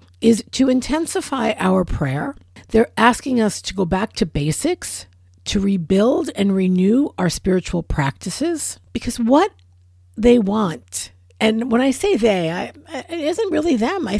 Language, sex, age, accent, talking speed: English, female, 50-69, American, 145 wpm